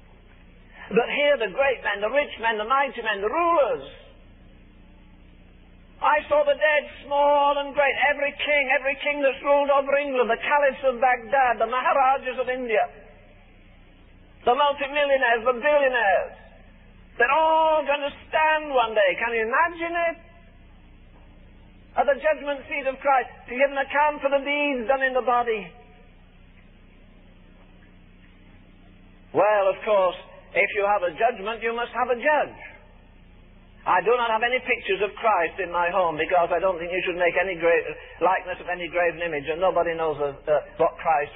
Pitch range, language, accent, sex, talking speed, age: 170-275 Hz, English, British, male, 165 wpm, 50-69